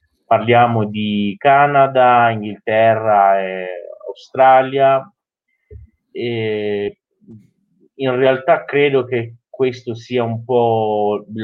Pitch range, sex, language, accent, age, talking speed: 105-130 Hz, male, Italian, native, 30-49, 80 wpm